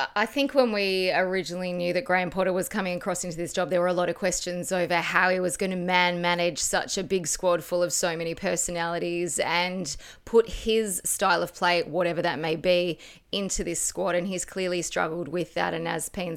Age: 20-39